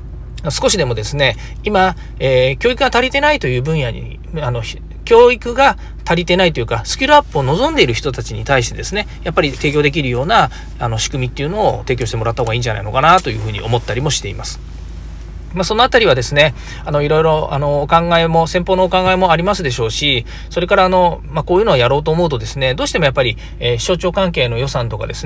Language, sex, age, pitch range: Japanese, male, 40-59, 115-170 Hz